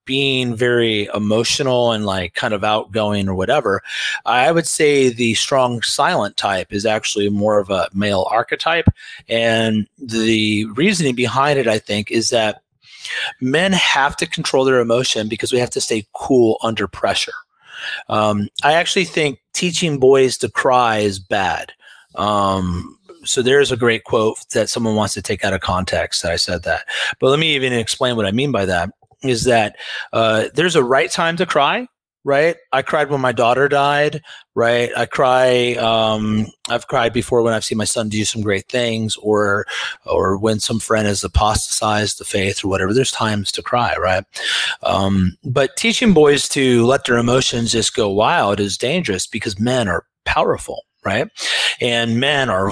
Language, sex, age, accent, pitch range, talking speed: English, male, 30-49, American, 105-130 Hz, 175 wpm